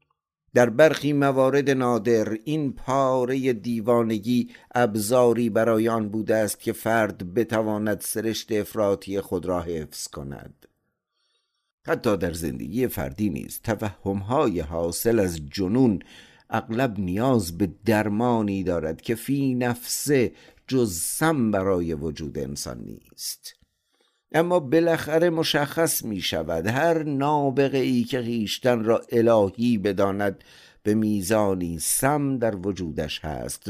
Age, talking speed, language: 50-69, 110 wpm, Persian